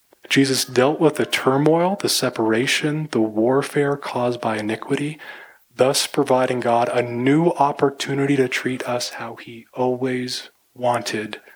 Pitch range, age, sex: 110-130 Hz, 20-39, male